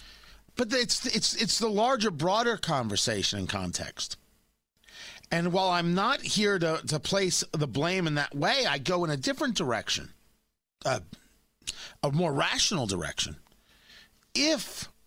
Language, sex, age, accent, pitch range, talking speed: English, male, 50-69, American, 160-220 Hz, 140 wpm